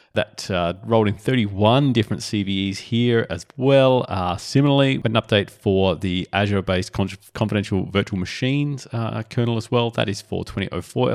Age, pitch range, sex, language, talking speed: 30-49, 100-120 Hz, male, English, 155 wpm